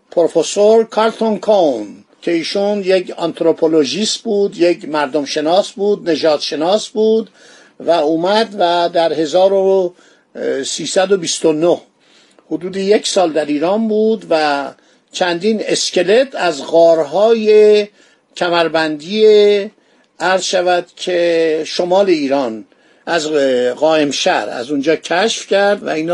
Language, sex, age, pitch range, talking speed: Persian, male, 50-69, 160-205 Hz, 105 wpm